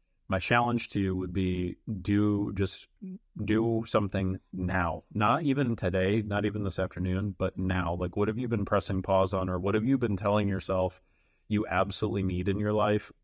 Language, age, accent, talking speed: English, 30-49, American, 185 wpm